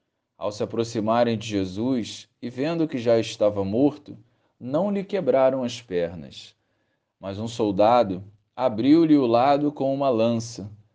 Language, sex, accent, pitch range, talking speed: Portuguese, male, Brazilian, 110-150 Hz, 135 wpm